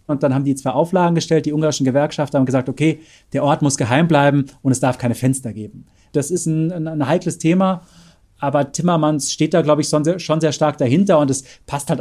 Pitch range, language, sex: 130-150 Hz, German, male